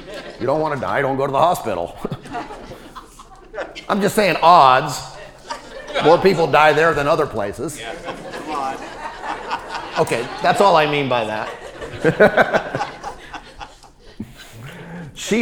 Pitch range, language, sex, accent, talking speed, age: 125-170 Hz, English, male, American, 115 wpm, 40-59